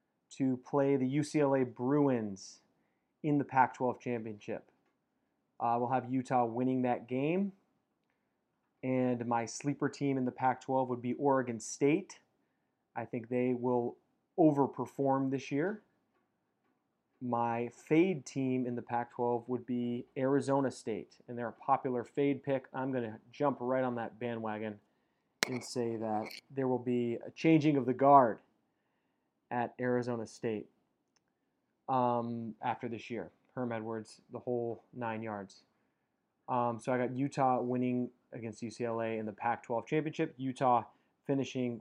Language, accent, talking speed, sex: English, American, 140 wpm, male